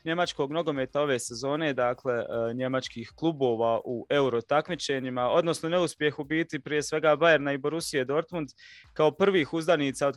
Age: 20-39